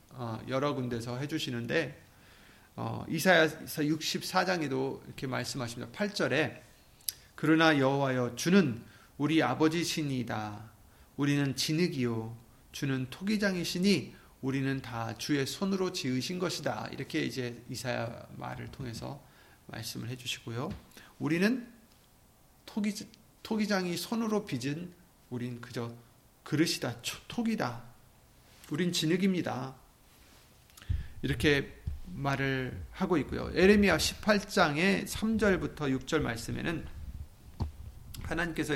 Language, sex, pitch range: Korean, male, 125-185 Hz